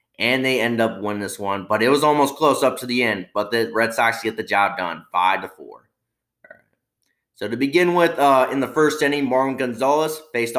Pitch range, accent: 105-130 Hz, American